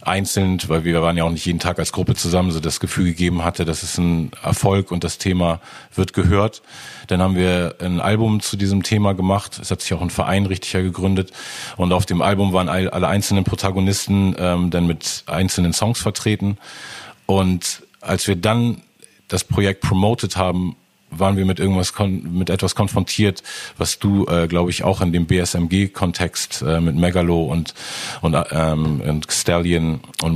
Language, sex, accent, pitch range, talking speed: German, male, German, 85-95 Hz, 180 wpm